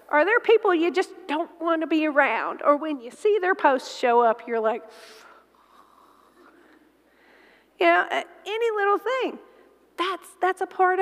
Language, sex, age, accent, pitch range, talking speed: English, female, 40-59, American, 295-375 Hz, 165 wpm